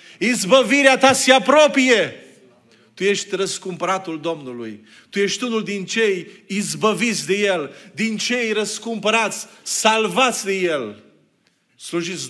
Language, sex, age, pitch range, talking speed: Romanian, male, 40-59, 135-225 Hz, 110 wpm